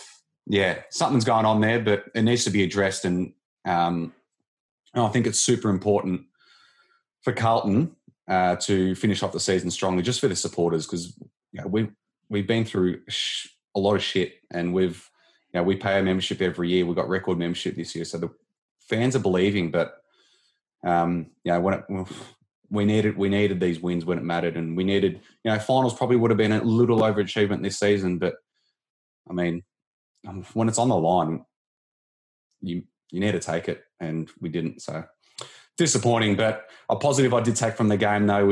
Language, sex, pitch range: English, male, 90-110 Hz